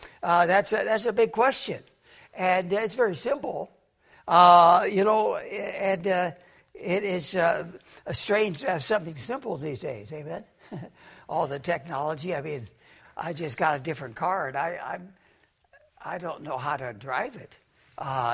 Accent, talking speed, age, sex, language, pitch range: American, 175 wpm, 60-79, male, English, 165-230 Hz